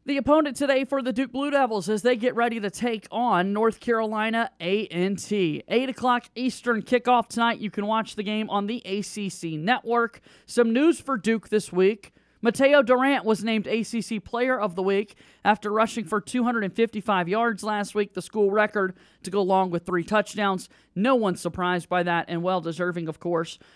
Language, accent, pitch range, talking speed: English, American, 185-235 Hz, 185 wpm